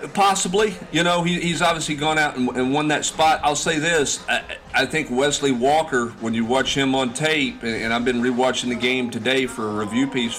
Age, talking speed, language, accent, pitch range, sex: 40-59, 230 wpm, English, American, 110-140 Hz, male